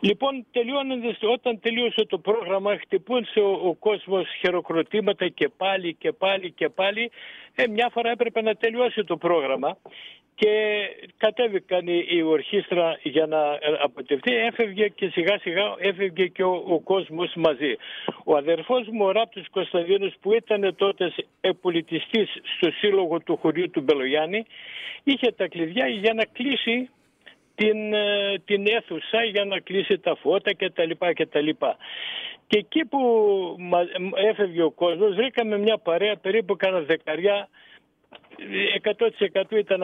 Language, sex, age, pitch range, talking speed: Greek, male, 60-79, 175-225 Hz, 140 wpm